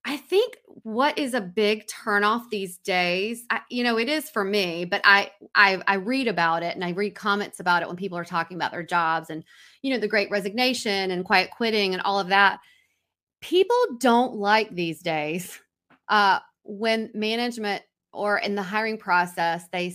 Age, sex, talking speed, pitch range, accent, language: 30-49, female, 190 wpm, 195-285 Hz, American, English